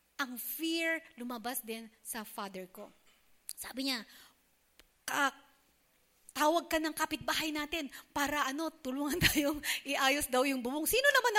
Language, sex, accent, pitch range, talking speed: English, female, Filipino, 265-385 Hz, 125 wpm